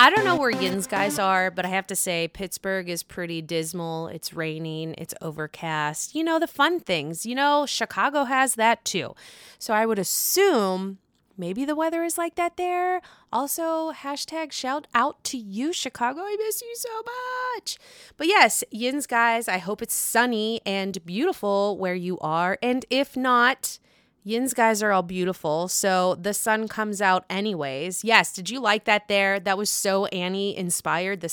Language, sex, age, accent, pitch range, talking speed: English, female, 20-39, American, 185-280 Hz, 180 wpm